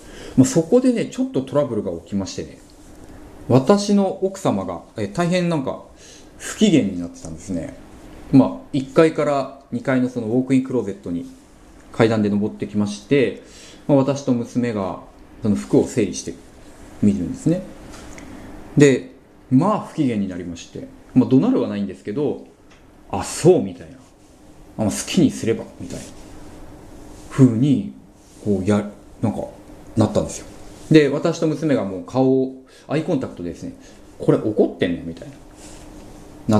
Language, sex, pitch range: Japanese, male, 100-170 Hz